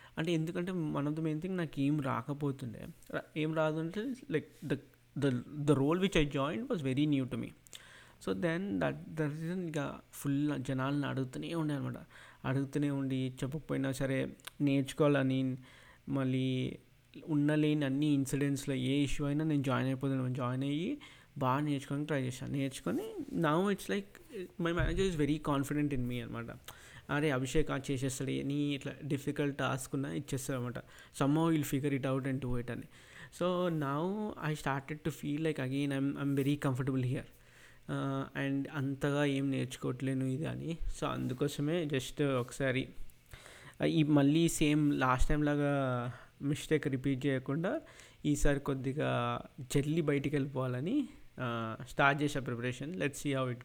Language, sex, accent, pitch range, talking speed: Telugu, male, native, 130-150 Hz, 150 wpm